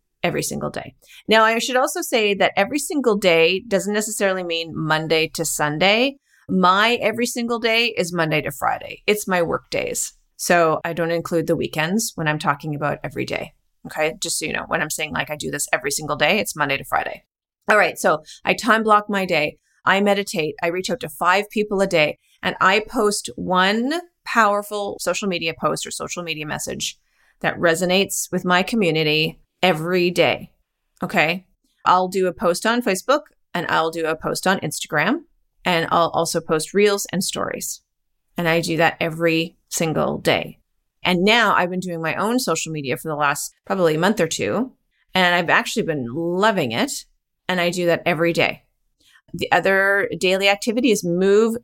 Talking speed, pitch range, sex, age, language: 185 wpm, 165-215 Hz, female, 30-49, English